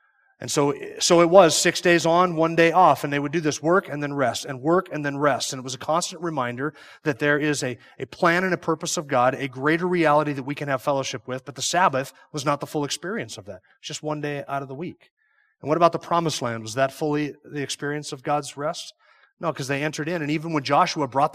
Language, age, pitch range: English, 30-49, 130-160 Hz